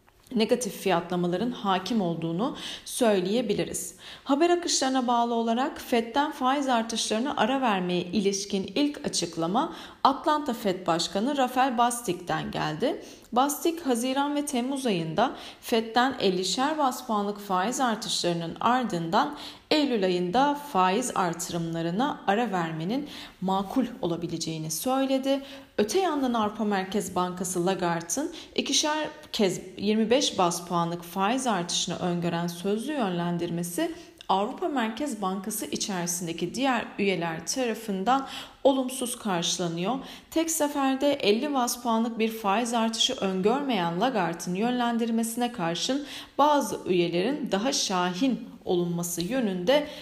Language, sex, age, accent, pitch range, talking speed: Turkish, female, 40-59, native, 180-265 Hz, 105 wpm